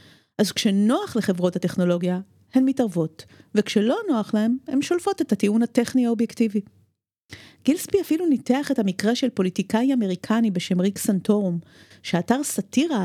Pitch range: 185-270 Hz